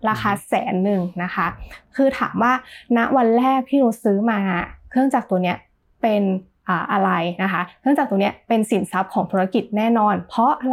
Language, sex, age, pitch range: Thai, female, 20-39, 195-245 Hz